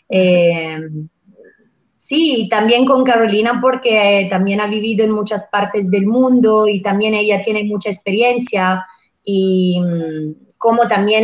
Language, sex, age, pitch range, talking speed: Portuguese, female, 30-49, 205-255 Hz, 125 wpm